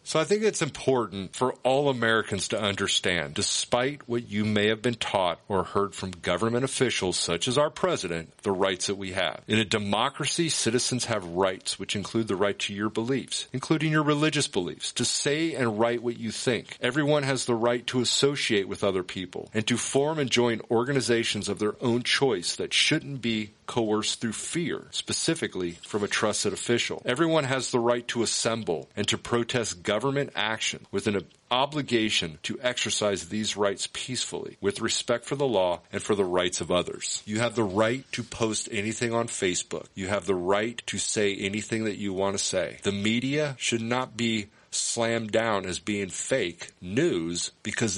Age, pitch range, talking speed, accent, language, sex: 40-59, 100-130 Hz, 185 wpm, American, English, male